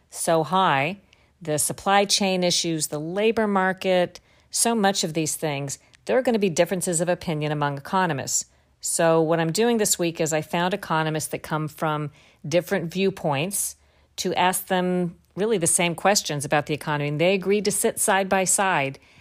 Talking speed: 180 wpm